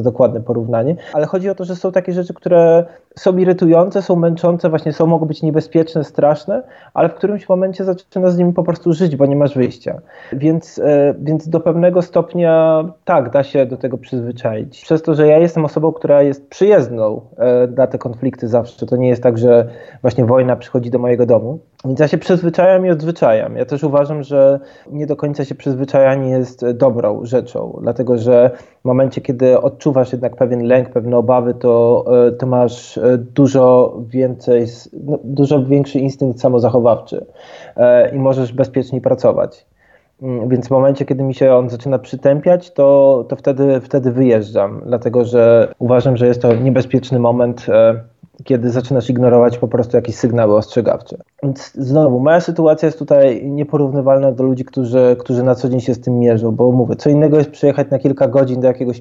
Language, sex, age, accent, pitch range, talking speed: Polish, male, 20-39, native, 125-155 Hz, 175 wpm